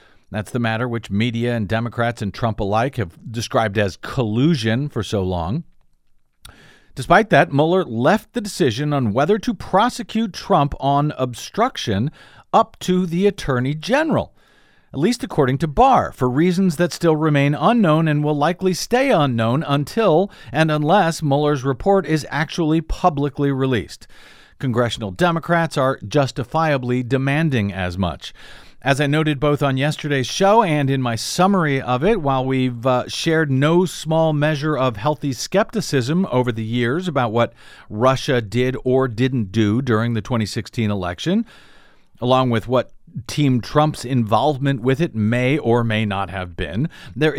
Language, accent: English, American